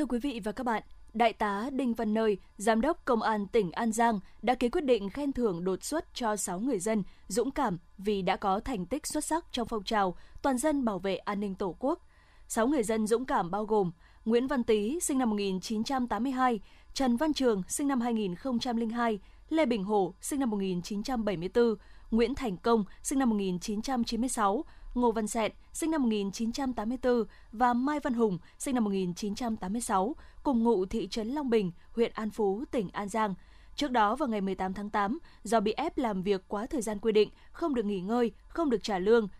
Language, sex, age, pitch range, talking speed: Vietnamese, female, 20-39, 205-255 Hz, 220 wpm